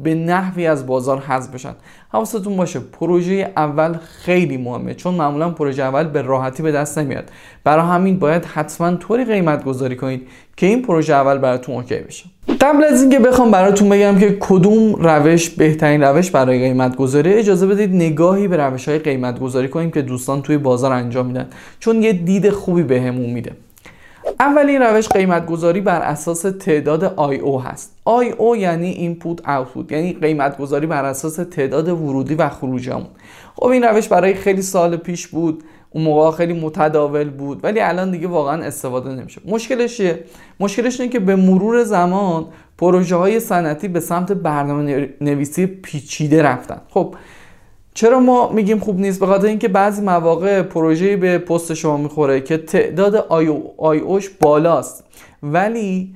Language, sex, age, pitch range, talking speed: Persian, male, 20-39, 145-195 Hz, 165 wpm